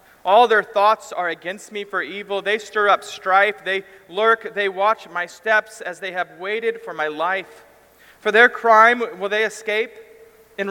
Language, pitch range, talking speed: English, 175-215 Hz, 180 wpm